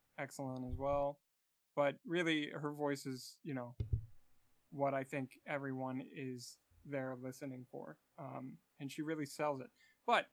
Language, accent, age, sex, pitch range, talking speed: English, American, 20-39, male, 145-175 Hz, 145 wpm